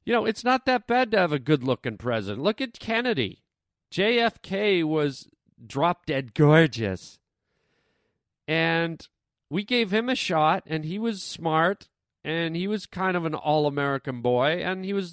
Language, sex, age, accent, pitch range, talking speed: English, male, 40-59, American, 155-215 Hz, 155 wpm